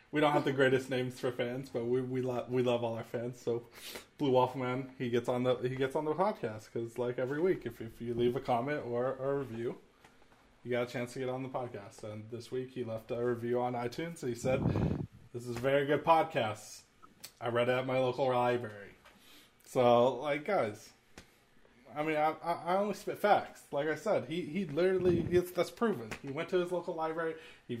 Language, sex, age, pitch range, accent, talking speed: English, male, 20-39, 120-145 Hz, American, 220 wpm